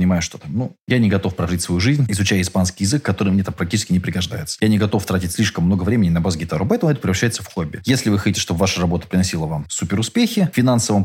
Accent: native